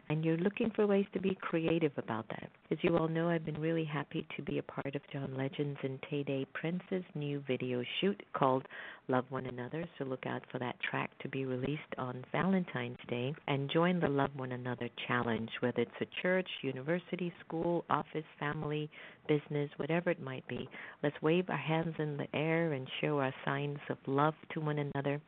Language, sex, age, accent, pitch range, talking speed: English, female, 50-69, American, 130-165 Hz, 200 wpm